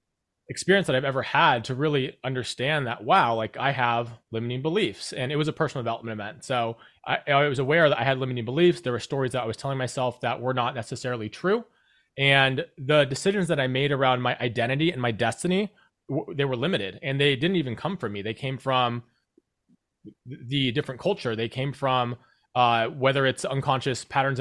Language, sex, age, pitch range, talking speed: English, male, 30-49, 125-150 Hz, 200 wpm